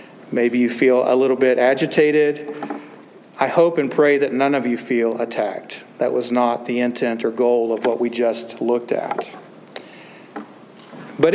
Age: 40-59